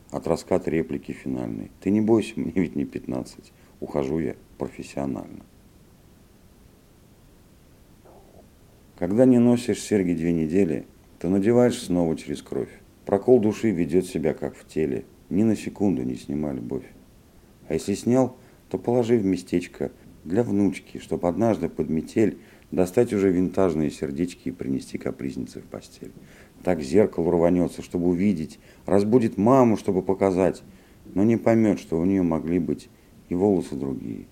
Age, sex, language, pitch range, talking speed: 50-69, male, Russian, 85-110 Hz, 140 wpm